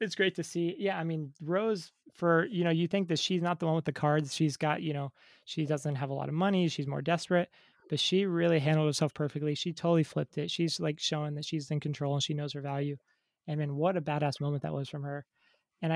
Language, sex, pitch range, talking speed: English, male, 150-180 Hz, 265 wpm